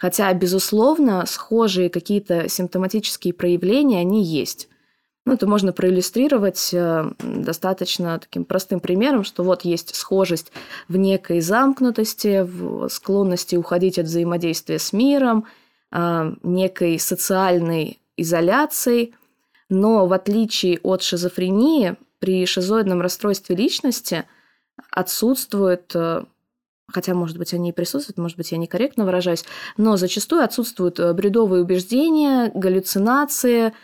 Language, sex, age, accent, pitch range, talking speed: Russian, female, 20-39, native, 175-220 Hz, 105 wpm